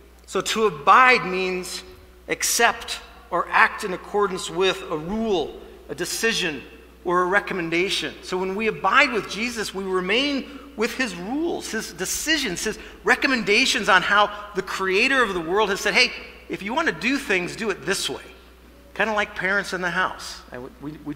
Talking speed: 170 wpm